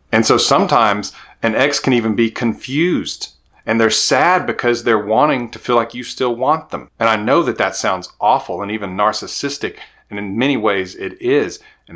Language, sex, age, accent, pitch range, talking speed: English, male, 30-49, American, 95-120 Hz, 195 wpm